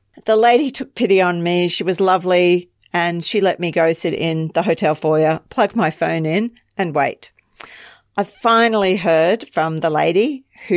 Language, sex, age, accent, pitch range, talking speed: English, female, 40-59, Australian, 165-210 Hz, 180 wpm